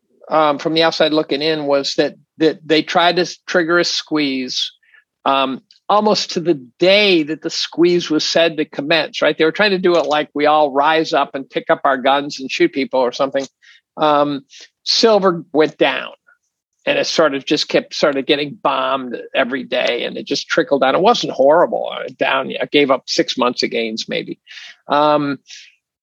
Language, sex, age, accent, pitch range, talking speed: English, male, 50-69, American, 150-175 Hz, 190 wpm